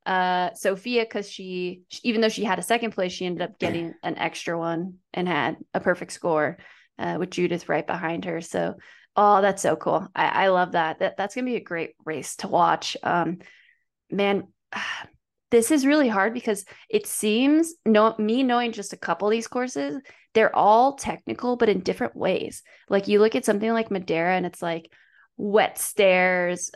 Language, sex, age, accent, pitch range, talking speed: English, female, 20-39, American, 170-210 Hz, 190 wpm